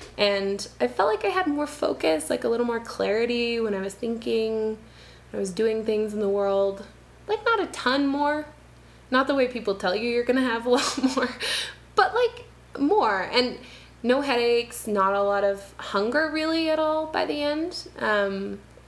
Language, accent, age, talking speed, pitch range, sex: English, American, 20-39, 195 wpm, 195-270 Hz, female